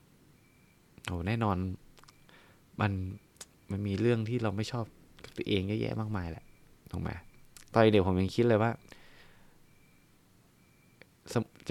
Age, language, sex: 20-39, Thai, male